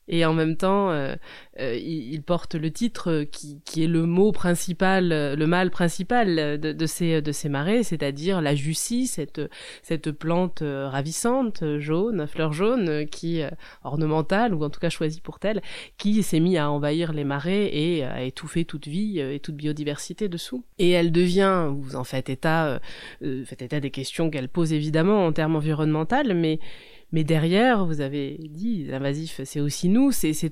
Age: 20-39